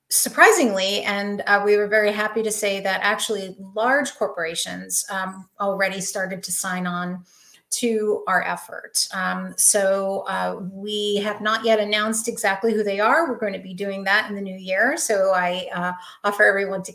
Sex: female